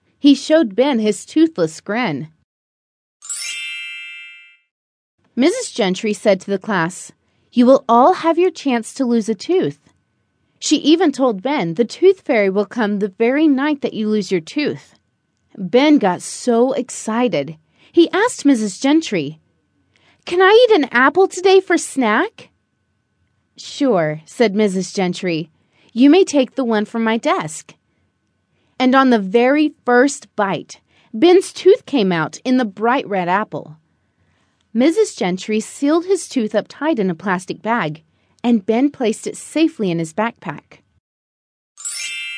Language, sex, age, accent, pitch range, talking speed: English, female, 30-49, American, 185-300 Hz, 145 wpm